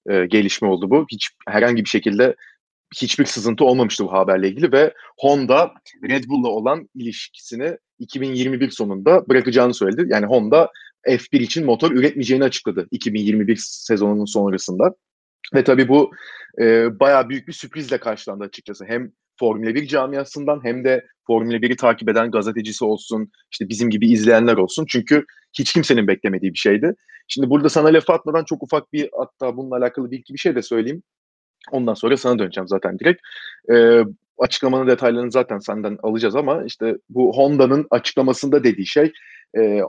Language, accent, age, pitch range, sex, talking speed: Turkish, native, 30-49, 110-135 Hz, male, 155 wpm